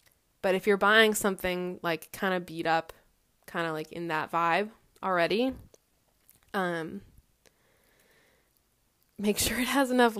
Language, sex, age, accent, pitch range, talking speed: English, female, 20-39, American, 180-220 Hz, 135 wpm